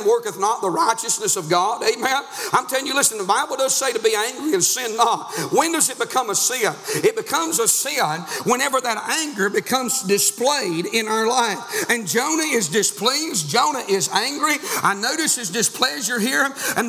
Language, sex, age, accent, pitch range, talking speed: English, male, 50-69, American, 215-280 Hz, 185 wpm